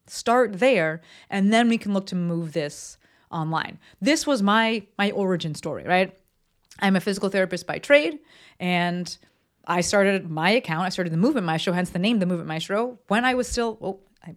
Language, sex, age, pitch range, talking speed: English, female, 30-49, 175-225 Hz, 195 wpm